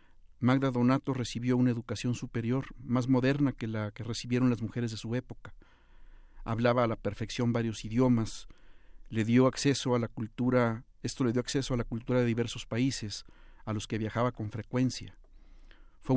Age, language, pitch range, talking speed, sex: 50-69, Spanish, 110-125 Hz, 170 wpm, male